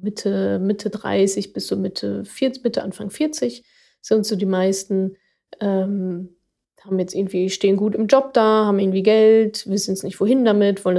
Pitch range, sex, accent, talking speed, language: 190-225 Hz, female, German, 175 wpm, German